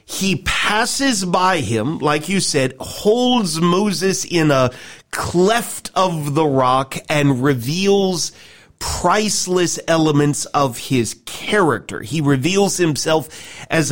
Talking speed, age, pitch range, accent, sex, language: 110 wpm, 40-59, 145-185 Hz, American, male, English